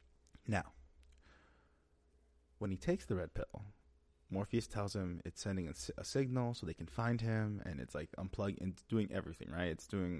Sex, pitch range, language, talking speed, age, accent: male, 70-110 Hz, English, 175 wpm, 30-49, American